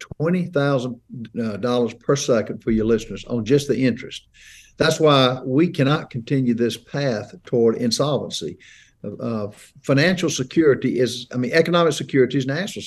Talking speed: 130 wpm